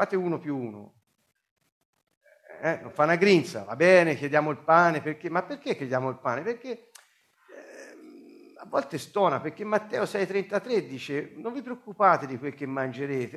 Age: 50-69